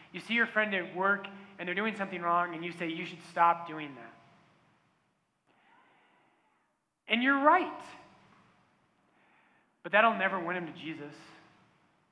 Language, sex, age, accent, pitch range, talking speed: English, male, 20-39, American, 175-225 Hz, 145 wpm